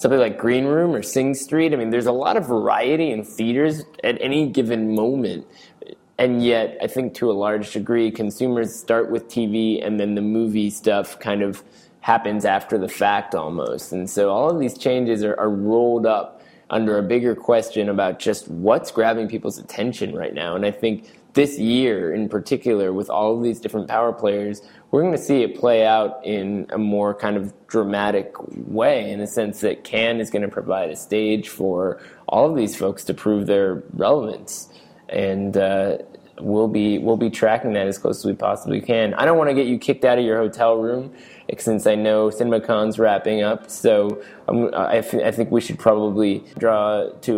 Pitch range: 105-120 Hz